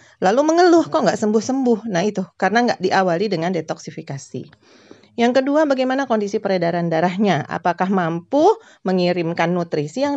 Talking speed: 135 wpm